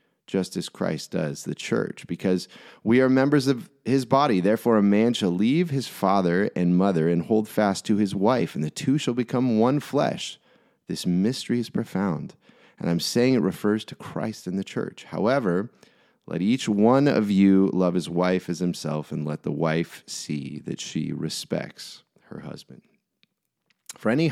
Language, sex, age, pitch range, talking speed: English, male, 30-49, 85-110 Hz, 180 wpm